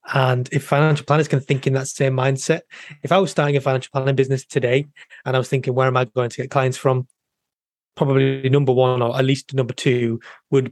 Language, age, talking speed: English, 20-39, 225 wpm